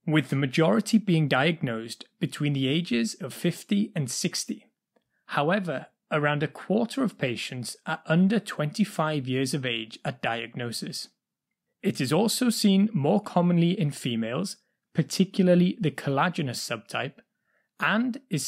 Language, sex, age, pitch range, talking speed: English, male, 30-49, 140-200 Hz, 130 wpm